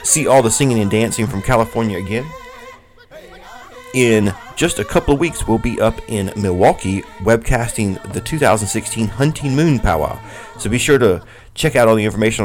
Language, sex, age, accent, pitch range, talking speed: English, male, 30-49, American, 100-135 Hz, 170 wpm